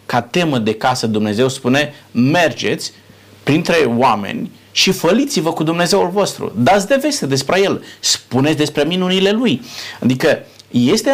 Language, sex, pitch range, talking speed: Romanian, male, 115-190 Hz, 135 wpm